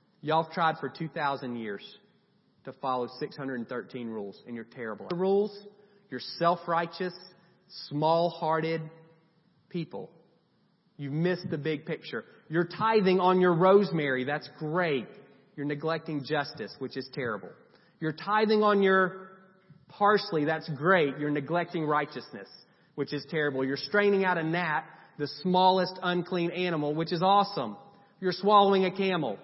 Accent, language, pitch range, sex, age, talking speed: American, English, 155-195 Hz, male, 30-49, 135 wpm